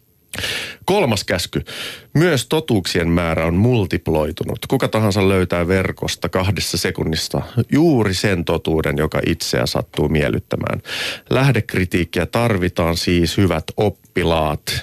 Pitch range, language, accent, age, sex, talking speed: 80-110 Hz, Finnish, native, 30-49, male, 100 wpm